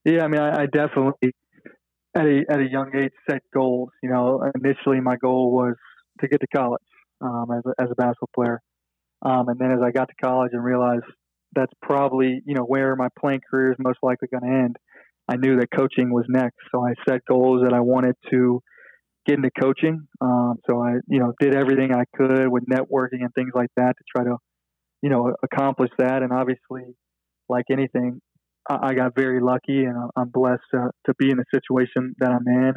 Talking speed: 205 wpm